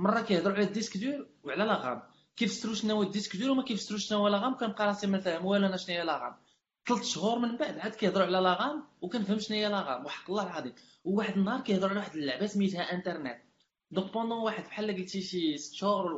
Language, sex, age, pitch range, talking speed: Arabic, male, 20-39, 160-210 Hz, 225 wpm